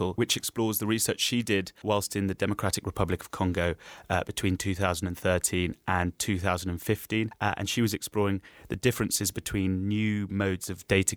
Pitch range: 90-105 Hz